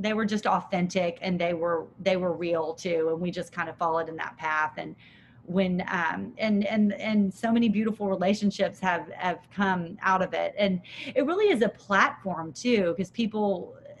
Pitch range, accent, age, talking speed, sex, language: 170-200 Hz, American, 30-49, 195 wpm, female, English